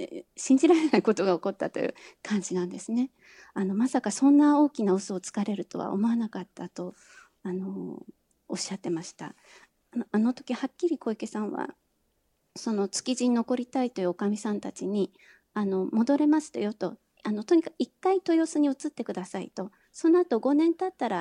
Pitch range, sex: 200-270 Hz, female